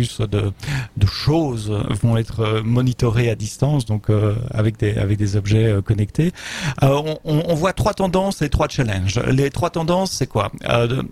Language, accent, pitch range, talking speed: French, French, 110-135 Hz, 180 wpm